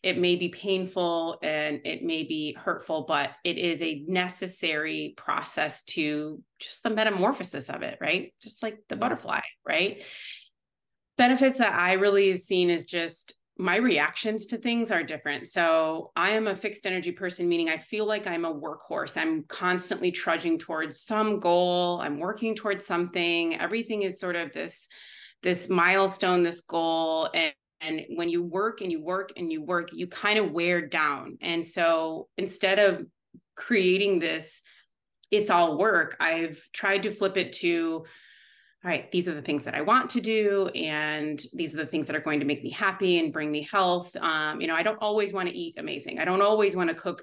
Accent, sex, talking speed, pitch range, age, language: American, female, 190 wpm, 165-205 Hz, 30-49, English